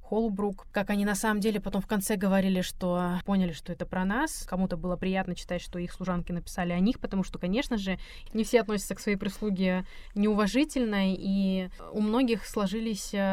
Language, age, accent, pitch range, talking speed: Russian, 20-39, native, 180-210 Hz, 185 wpm